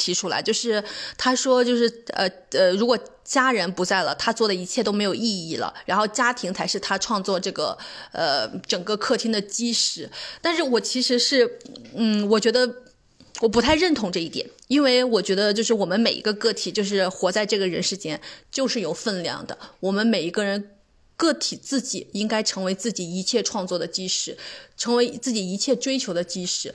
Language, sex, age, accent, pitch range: Chinese, female, 20-39, native, 190-245 Hz